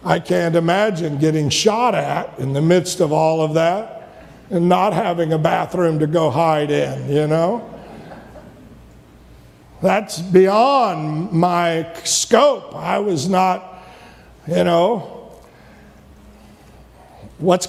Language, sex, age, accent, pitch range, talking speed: English, male, 60-79, American, 175-215 Hz, 115 wpm